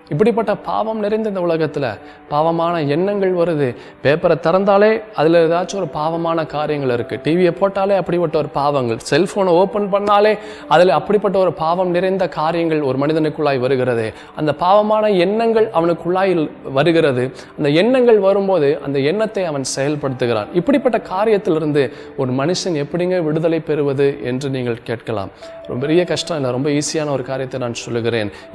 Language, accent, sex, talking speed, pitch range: Tamil, native, male, 135 wpm, 145-190 Hz